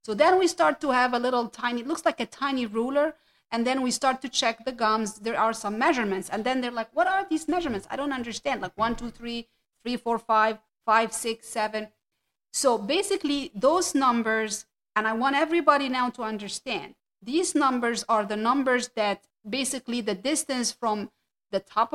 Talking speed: 195 wpm